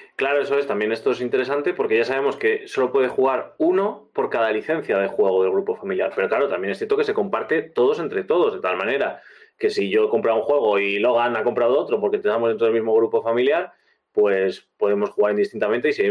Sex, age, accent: male, 20-39, Spanish